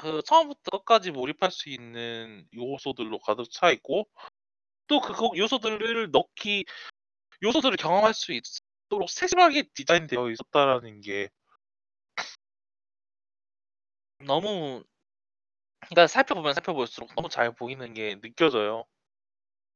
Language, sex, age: Korean, male, 20-39